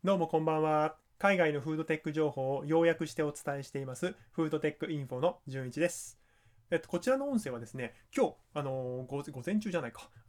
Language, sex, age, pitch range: Japanese, male, 20-39, 120-170 Hz